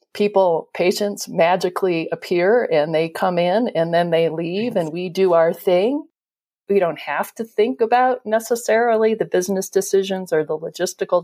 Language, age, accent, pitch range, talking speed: English, 40-59, American, 175-215 Hz, 160 wpm